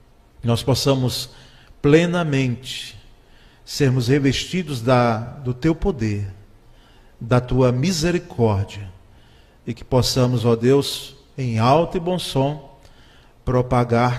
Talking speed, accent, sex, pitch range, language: 95 wpm, Brazilian, male, 115-150 Hz, Portuguese